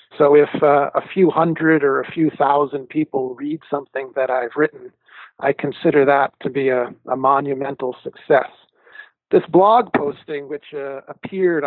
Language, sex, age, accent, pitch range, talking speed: English, male, 40-59, American, 135-170 Hz, 160 wpm